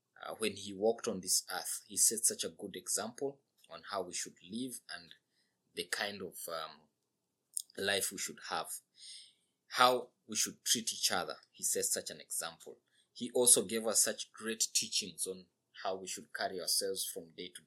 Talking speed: 185 wpm